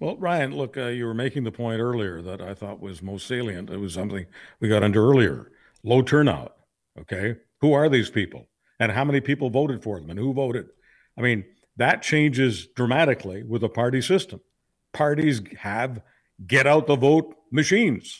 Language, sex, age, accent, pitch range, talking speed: English, male, 50-69, American, 110-145 Hz, 185 wpm